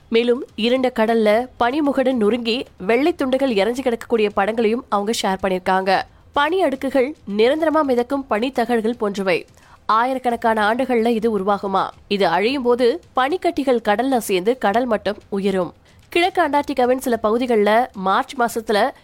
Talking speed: 65 wpm